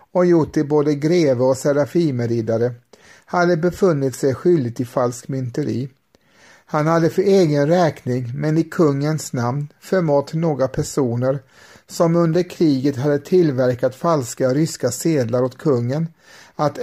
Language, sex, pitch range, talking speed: Swedish, male, 130-160 Hz, 130 wpm